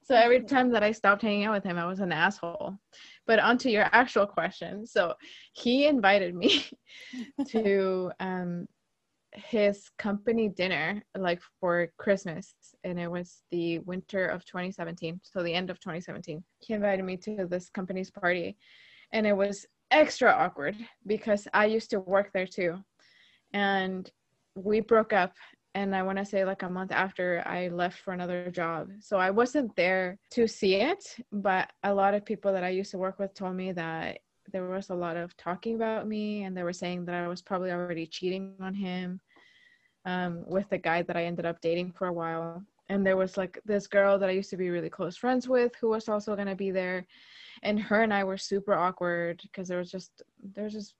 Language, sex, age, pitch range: English, female, 20-39, 180-220 Hz